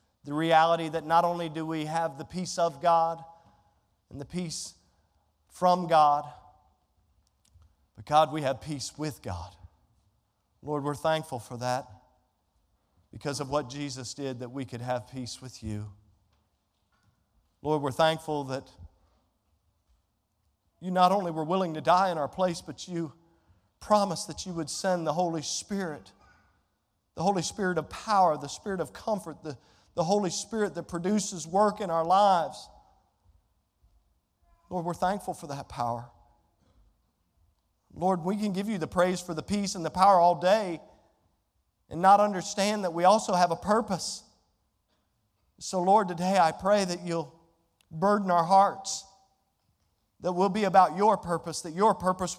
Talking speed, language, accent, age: 150 wpm, English, American, 40-59